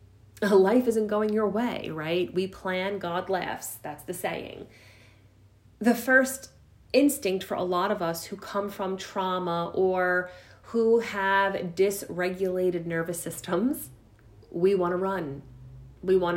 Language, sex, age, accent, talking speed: English, female, 30-49, American, 135 wpm